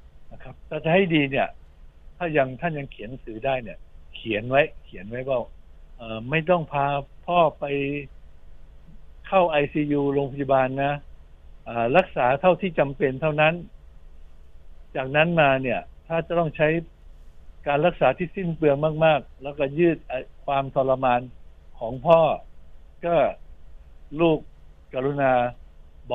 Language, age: Thai, 60-79